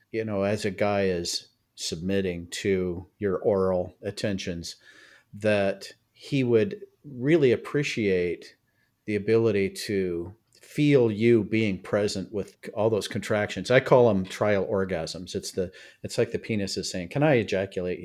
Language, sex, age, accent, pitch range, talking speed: English, male, 50-69, American, 95-115 Hz, 145 wpm